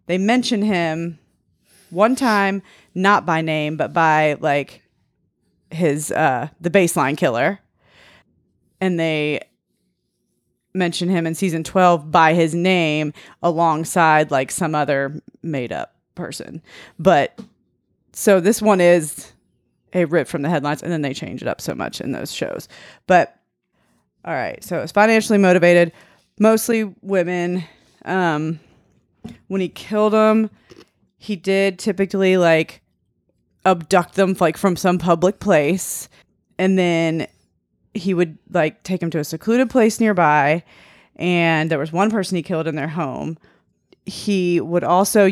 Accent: American